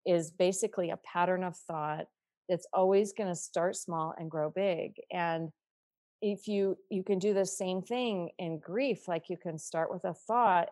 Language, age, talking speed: English, 40-59, 185 wpm